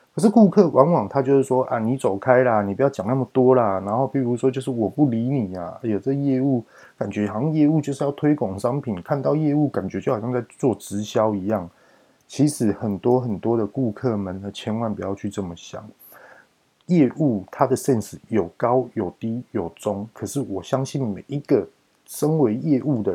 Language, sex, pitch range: Chinese, male, 105-135 Hz